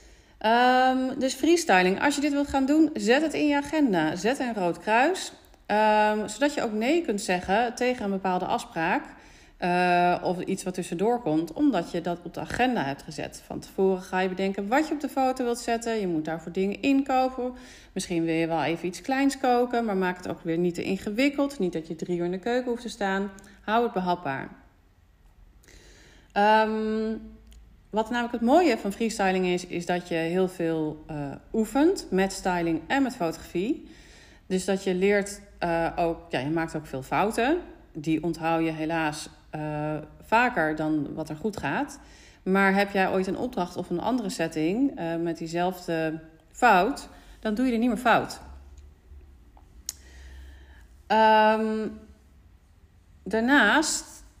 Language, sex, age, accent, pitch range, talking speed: Dutch, female, 40-59, Dutch, 165-235 Hz, 170 wpm